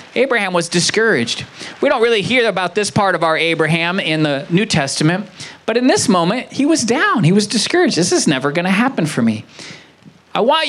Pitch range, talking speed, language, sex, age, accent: 160-215 Hz, 200 wpm, English, male, 40-59, American